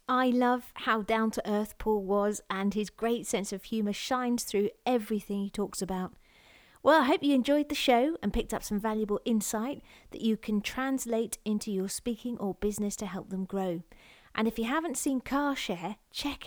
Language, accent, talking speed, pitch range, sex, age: English, British, 190 wpm, 200-255 Hz, female, 40-59